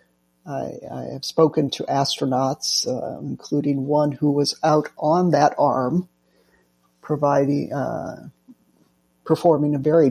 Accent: American